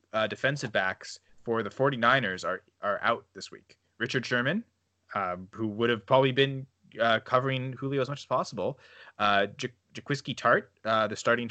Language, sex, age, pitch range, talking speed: English, male, 20-39, 105-130 Hz, 165 wpm